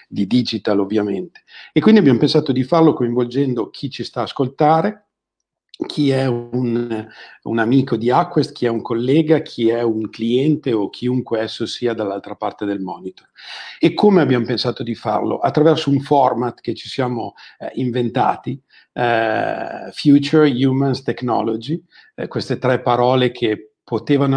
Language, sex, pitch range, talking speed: Italian, male, 115-140 Hz, 155 wpm